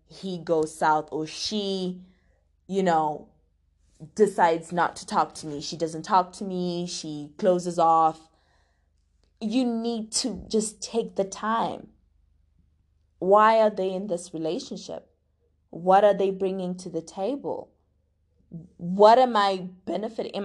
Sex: female